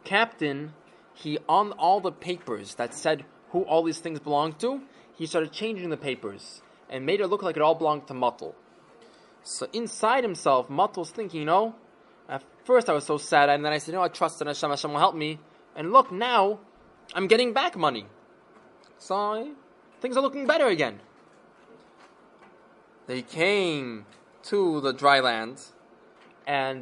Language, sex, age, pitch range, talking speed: English, male, 20-39, 150-230 Hz, 170 wpm